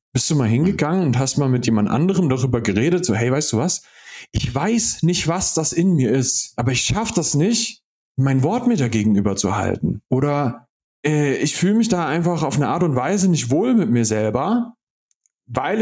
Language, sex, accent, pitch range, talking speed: German, male, German, 125-185 Hz, 200 wpm